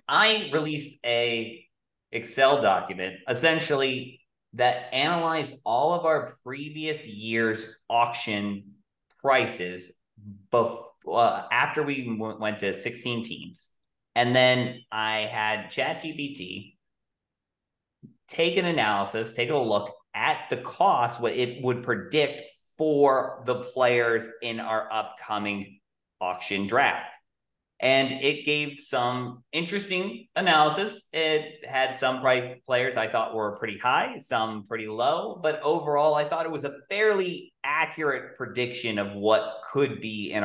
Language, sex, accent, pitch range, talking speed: English, male, American, 110-155 Hz, 125 wpm